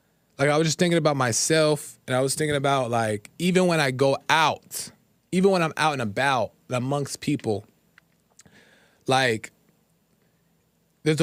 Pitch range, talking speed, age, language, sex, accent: 140-180 Hz, 150 wpm, 20-39, English, male, American